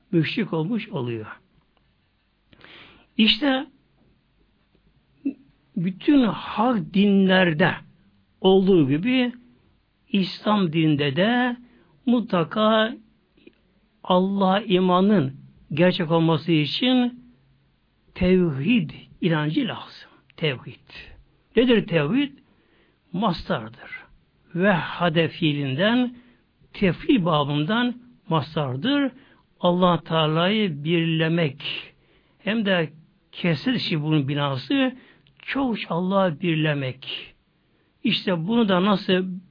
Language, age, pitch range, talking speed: Turkish, 60-79, 160-220 Hz, 70 wpm